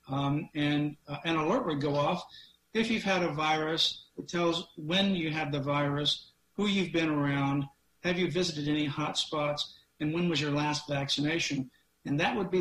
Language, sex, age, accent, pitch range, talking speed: English, male, 50-69, American, 140-165 Hz, 190 wpm